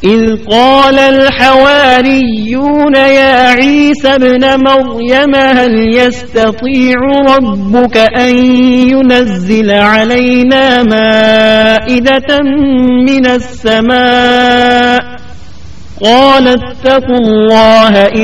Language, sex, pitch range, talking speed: Urdu, male, 225-270 Hz, 65 wpm